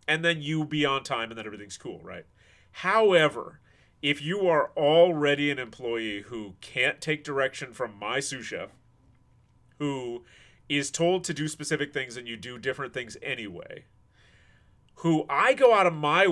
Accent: American